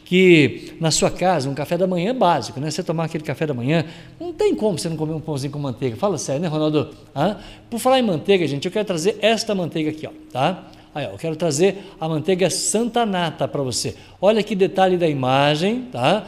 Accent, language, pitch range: Brazilian, Portuguese, 165-210 Hz